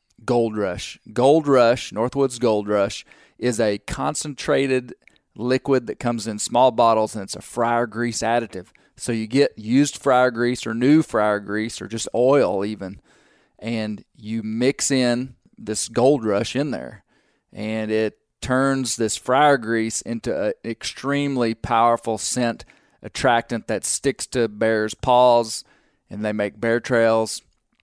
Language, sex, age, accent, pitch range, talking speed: English, male, 30-49, American, 110-125 Hz, 145 wpm